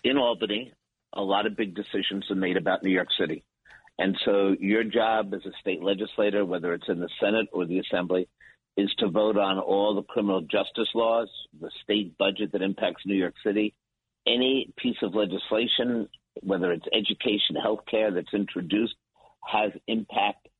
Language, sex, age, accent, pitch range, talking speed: English, male, 50-69, American, 95-105 Hz, 170 wpm